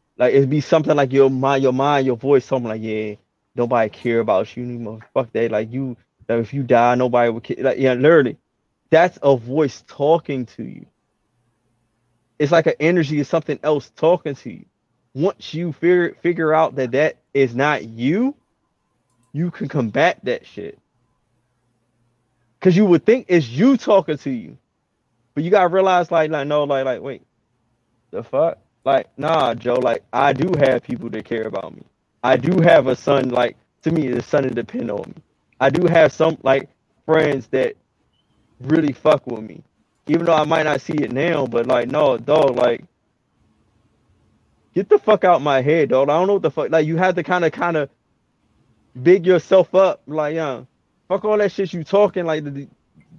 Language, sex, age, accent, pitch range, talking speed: English, male, 20-39, American, 125-165 Hz, 190 wpm